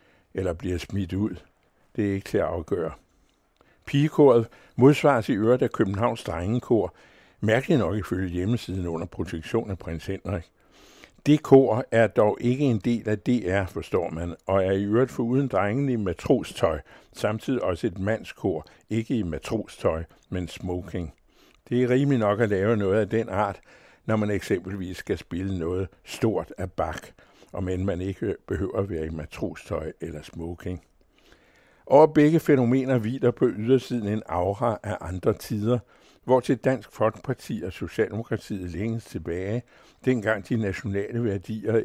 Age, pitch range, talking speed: 60-79, 95-120 Hz, 155 wpm